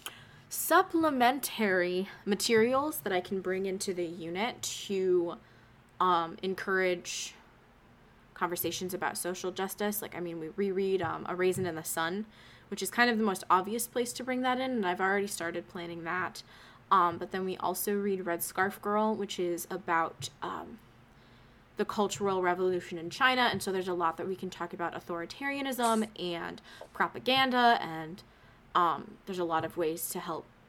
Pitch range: 170-205 Hz